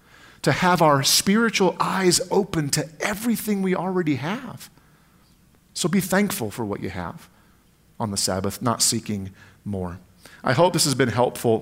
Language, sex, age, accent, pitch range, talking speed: English, male, 40-59, American, 125-180 Hz, 155 wpm